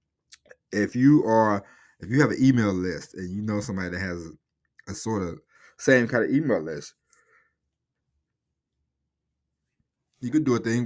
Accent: American